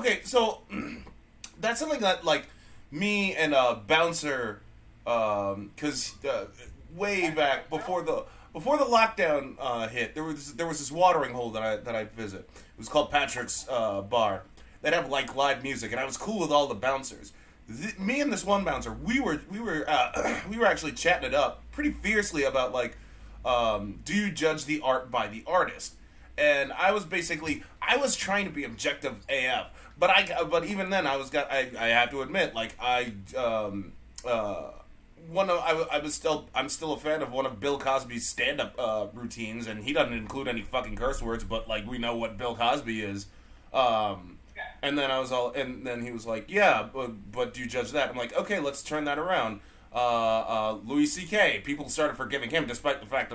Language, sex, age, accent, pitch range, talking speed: English, male, 20-39, American, 115-170 Hz, 205 wpm